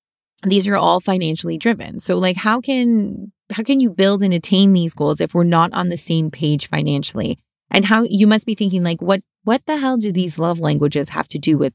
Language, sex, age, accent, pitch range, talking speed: English, female, 20-39, American, 170-225 Hz, 225 wpm